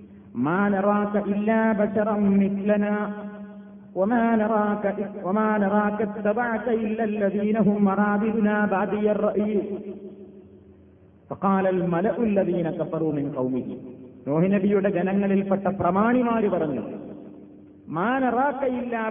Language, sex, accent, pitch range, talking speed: Malayalam, male, native, 195-210 Hz, 90 wpm